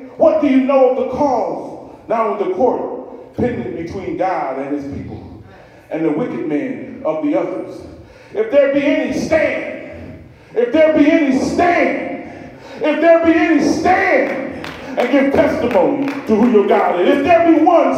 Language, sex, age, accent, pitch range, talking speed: English, male, 40-59, American, 270-335 Hz, 170 wpm